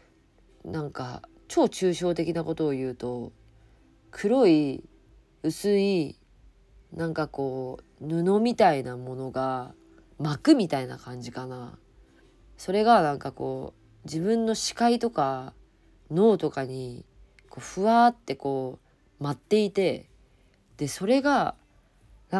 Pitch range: 130-195 Hz